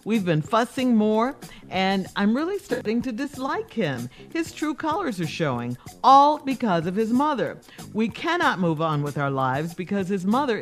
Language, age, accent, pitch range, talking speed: English, 50-69, American, 165-245 Hz, 175 wpm